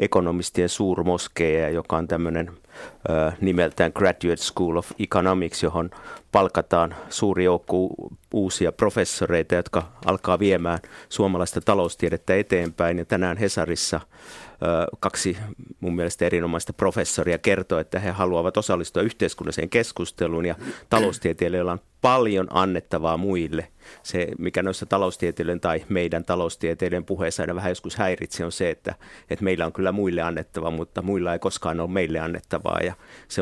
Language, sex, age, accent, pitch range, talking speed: Finnish, male, 50-69, native, 85-95 Hz, 135 wpm